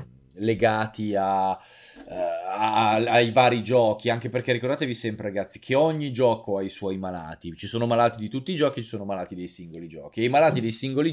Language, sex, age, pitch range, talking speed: Italian, male, 20-39, 105-125 Hz, 195 wpm